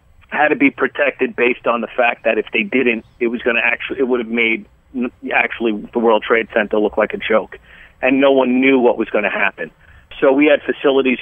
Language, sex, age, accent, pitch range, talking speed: English, male, 40-59, American, 115-140 Hz, 230 wpm